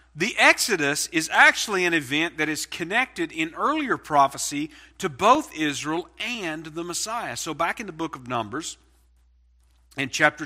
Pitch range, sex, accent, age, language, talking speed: 125-195 Hz, male, American, 40-59, English, 155 wpm